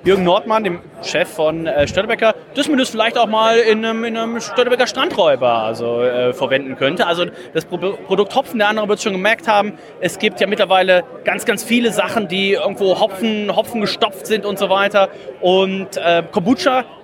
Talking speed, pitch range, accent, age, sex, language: 190 wpm, 175-215 Hz, German, 30-49, male, German